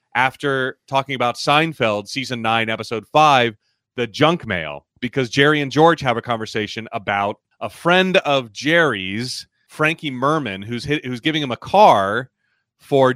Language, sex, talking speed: English, male, 150 wpm